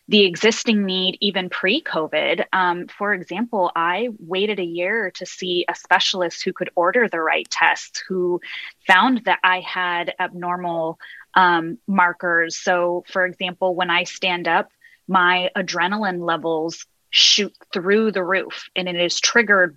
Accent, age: American, 20-39